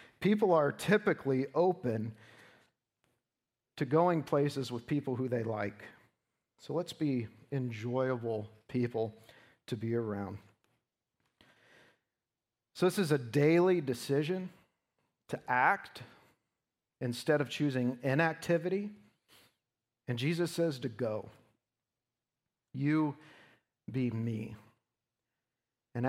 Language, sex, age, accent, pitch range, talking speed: English, male, 40-59, American, 115-145 Hz, 95 wpm